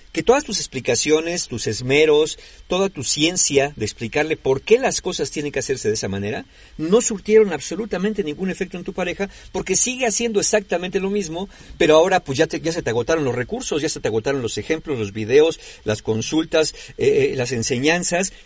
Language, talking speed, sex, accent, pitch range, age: Spanish, 190 wpm, male, Mexican, 140-210 Hz, 50-69